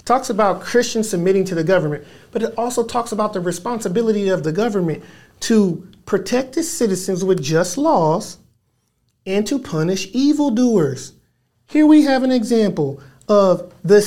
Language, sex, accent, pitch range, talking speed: English, male, American, 180-240 Hz, 150 wpm